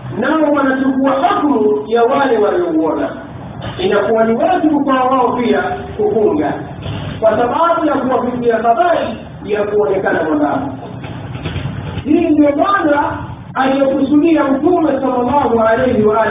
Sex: male